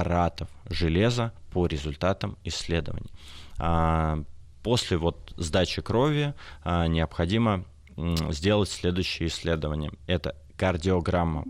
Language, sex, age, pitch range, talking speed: Russian, male, 20-39, 80-95 Hz, 75 wpm